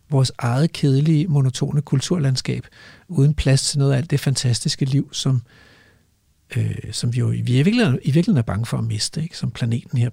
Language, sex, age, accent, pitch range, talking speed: Danish, male, 60-79, native, 120-170 Hz, 190 wpm